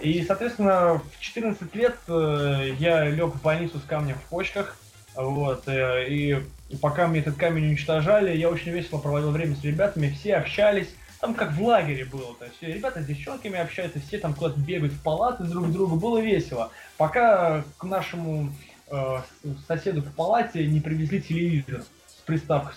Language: Russian